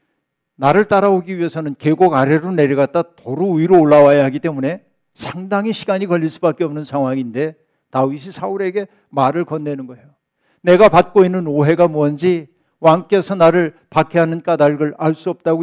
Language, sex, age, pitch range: Korean, male, 60-79, 140-175 Hz